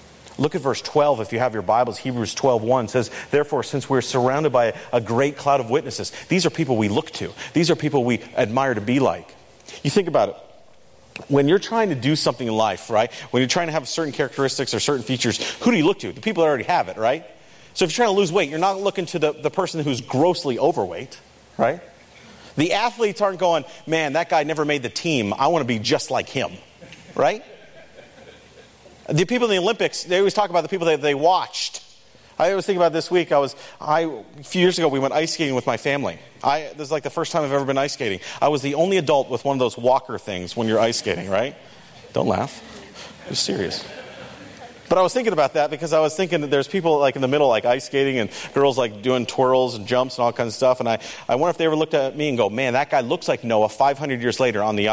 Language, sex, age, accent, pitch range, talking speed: English, male, 40-59, American, 125-165 Hz, 250 wpm